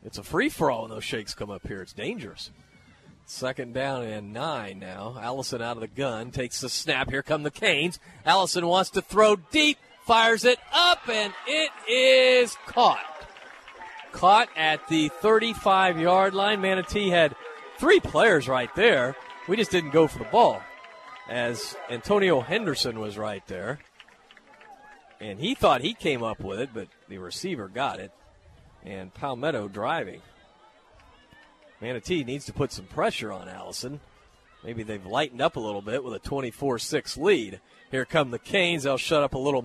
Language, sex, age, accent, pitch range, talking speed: English, male, 40-59, American, 130-185 Hz, 165 wpm